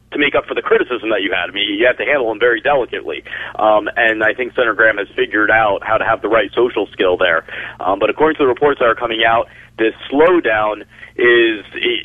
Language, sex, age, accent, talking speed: English, male, 40-59, American, 240 wpm